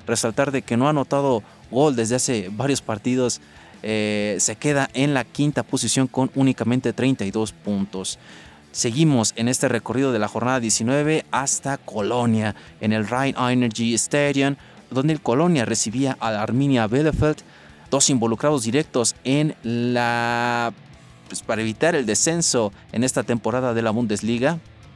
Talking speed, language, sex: 140 wpm, Spanish, male